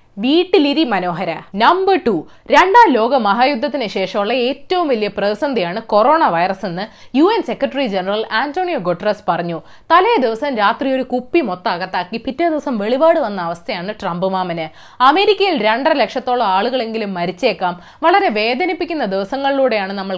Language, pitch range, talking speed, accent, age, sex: Malayalam, 205-325 Hz, 120 wpm, native, 20-39, female